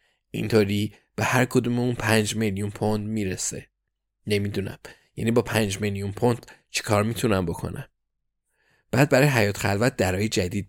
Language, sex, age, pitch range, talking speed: Persian, male, 20-39, 100-120 Hz, 135 wpm